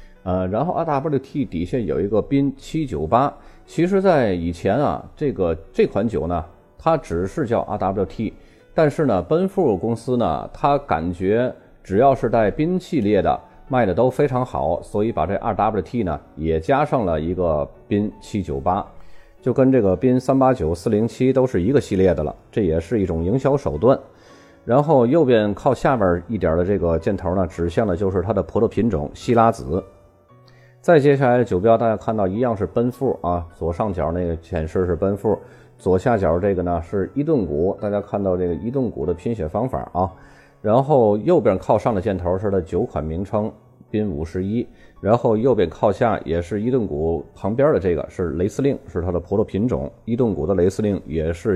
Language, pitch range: Chinese, 85-125 Hz